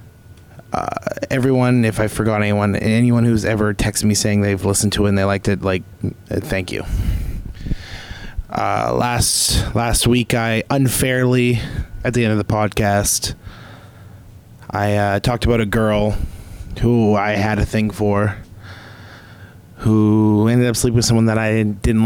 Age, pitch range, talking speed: 20-39, 100-115 Hz, 155 wpm